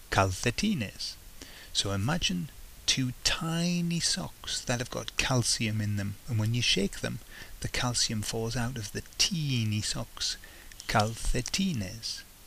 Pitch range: 95-120 Hz